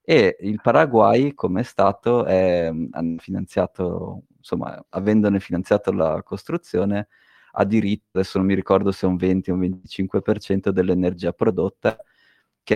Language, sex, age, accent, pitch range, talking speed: Italian, male, 30-49, native, 90-105 Hz, 120 wpm